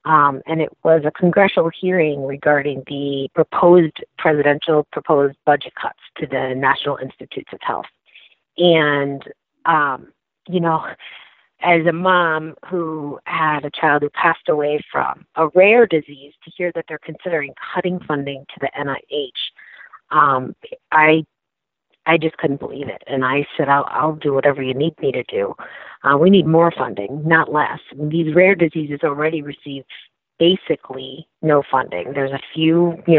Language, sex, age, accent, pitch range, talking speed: English, female, 40-59, American, 140-170 Hz, 155 wpm